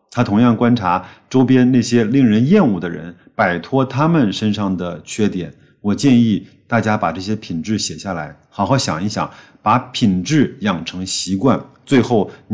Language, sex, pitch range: Chinese, male, 95-130 Hz